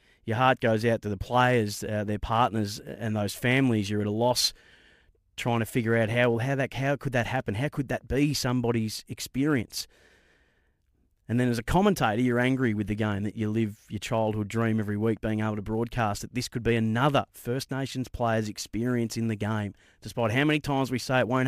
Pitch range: 110-130 Hz